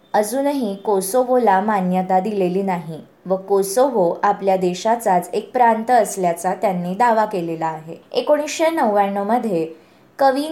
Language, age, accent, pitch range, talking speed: Marathi, 20-39, native, 190-250 Hz, 115 wpm